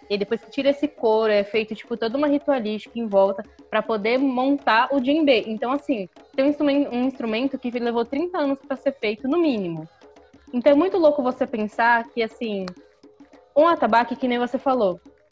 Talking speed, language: 185 wpm, Portuguese